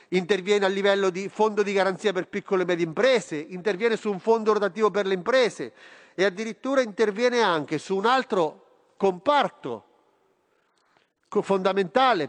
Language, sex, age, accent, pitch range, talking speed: Italian, male, 40-59, native, 180-220 Hz, 140 wpm